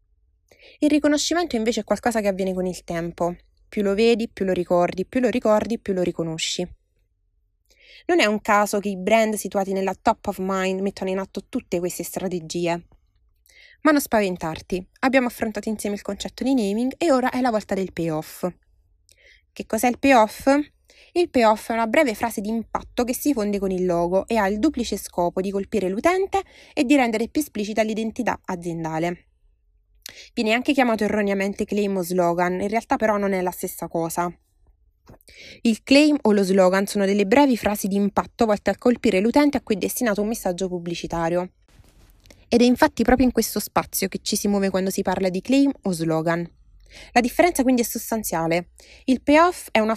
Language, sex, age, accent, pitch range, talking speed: Italian, female, 20-39, native, 180-240 Hz, 185 wpm